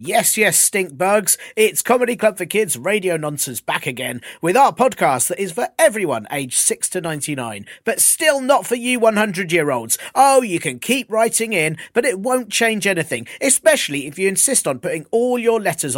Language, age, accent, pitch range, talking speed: English, 40-59, British, 140-225 Hz, 190 wpm